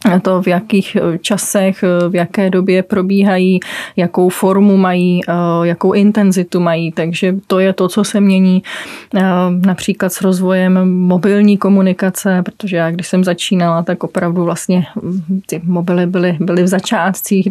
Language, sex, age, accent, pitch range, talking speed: Czech, female, 20-39, native, 180-195 Hz, 140 wpm